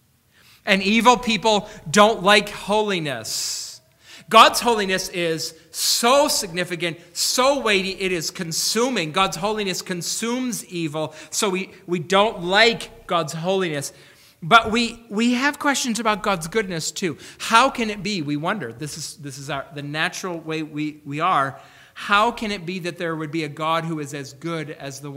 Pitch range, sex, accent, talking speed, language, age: 145-190 Hz, male, American, 165 wpm, English, 40-59